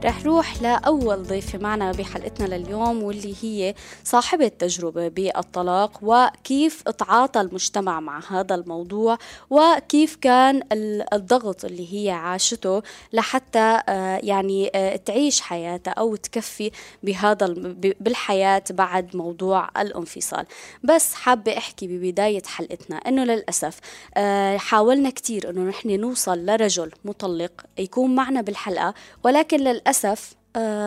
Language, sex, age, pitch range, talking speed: Arabic, female, 20-39, 185-225 Hz, 110 wpm